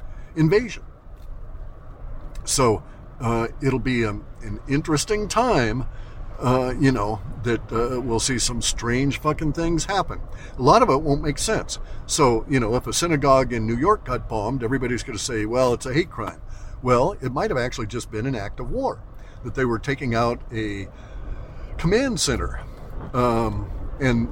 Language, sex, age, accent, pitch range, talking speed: English, male, 50-69, American, 115-140 Hz, 165 wpm